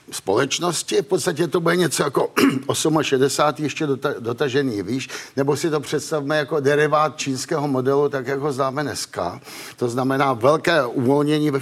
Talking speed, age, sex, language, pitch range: 150 wpm, 50-69, male, Slovak, 135-170 Hz